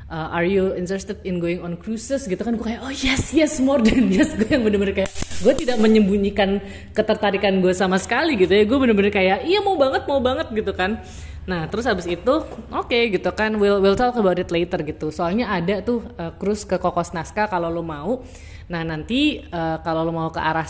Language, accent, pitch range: Indonesian, native, 165-215 Hz